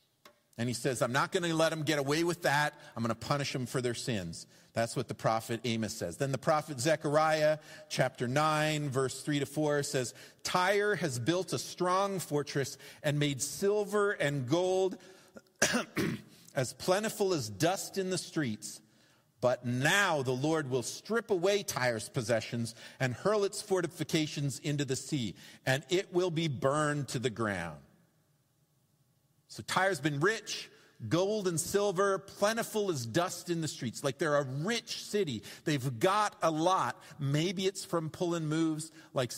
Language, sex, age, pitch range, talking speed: English, male, 50-69, 135-180 Hz, 165 wpm